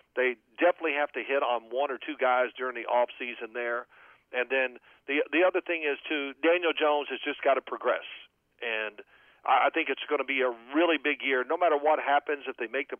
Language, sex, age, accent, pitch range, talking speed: English, male, 50-69, American, 130-195 Hz, 220 wpm